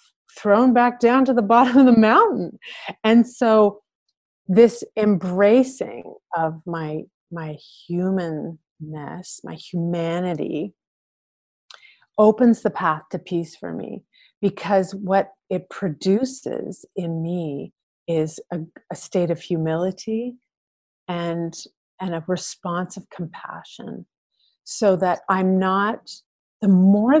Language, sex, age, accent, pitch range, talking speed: English, female, 30-49, American, 165-215 Hz, 110 wpm